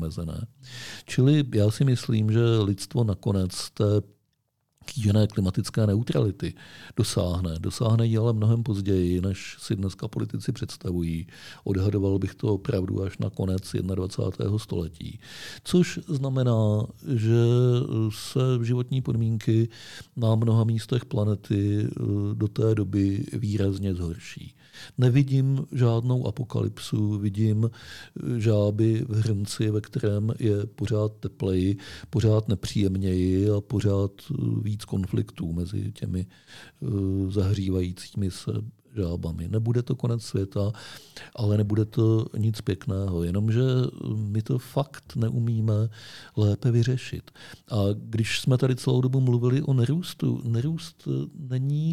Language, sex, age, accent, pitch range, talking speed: Czech, male, 50-69, native, 100-125 Hz, 110 wpm